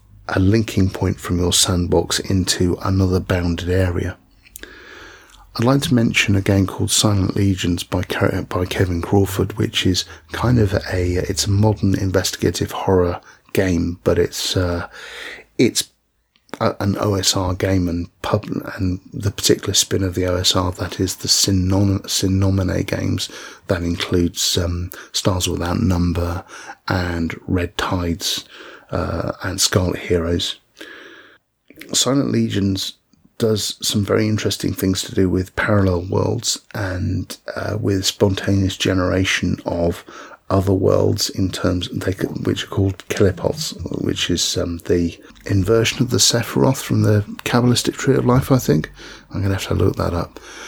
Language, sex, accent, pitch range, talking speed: English, male, British, 90-105 Hz, 140 wpm